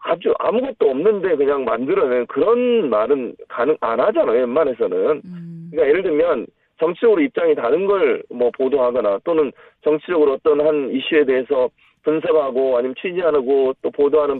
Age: 40-59